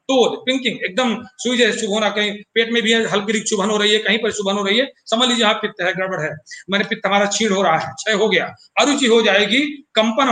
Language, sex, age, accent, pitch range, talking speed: Hindi, male, 40-59, native, 205-255 Hz, 80 wpm